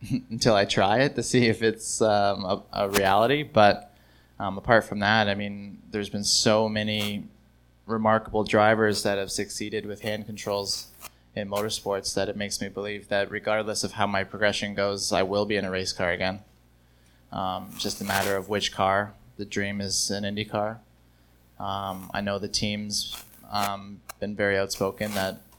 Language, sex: English, male